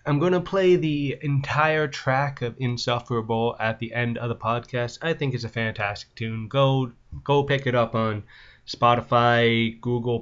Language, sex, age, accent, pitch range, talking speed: English, male, 20-39, American, 115-145 Hz, 165 wpm